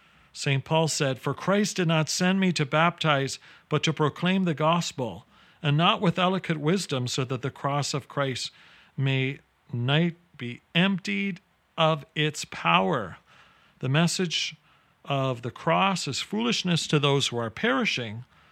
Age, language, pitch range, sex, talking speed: 40-59, English, 125-165 Hz, male, 150 wpm